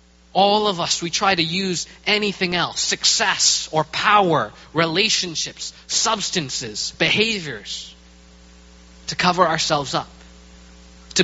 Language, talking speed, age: English, 105 wpm, 20-39